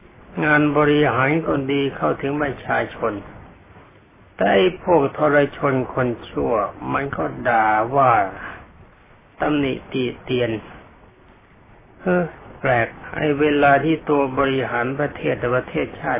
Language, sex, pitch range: Thai, male, 115-145 Hz